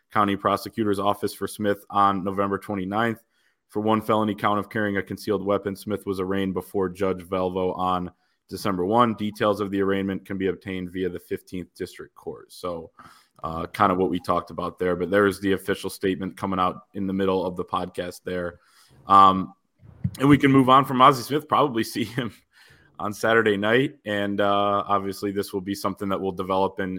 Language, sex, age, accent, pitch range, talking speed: English, male, 20-39, American, 95-110 Hz, 195 wpm